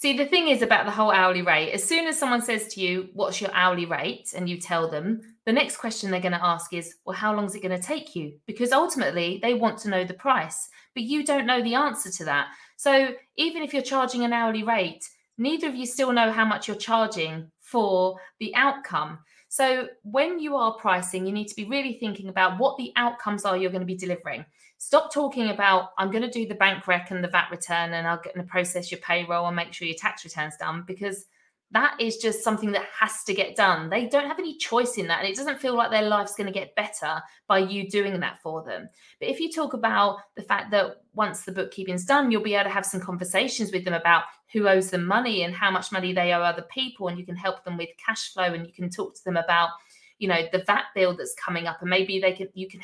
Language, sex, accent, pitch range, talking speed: English, female, British, 180-235 Hz, 255 wpm